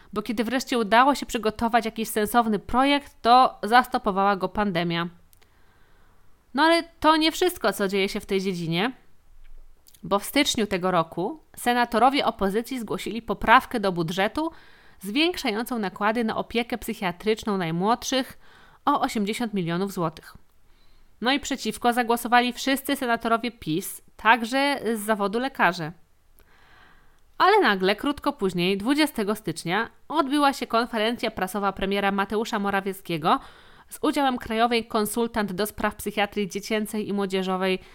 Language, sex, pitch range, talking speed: Polish, female, 195-255 Hz, 125 wpm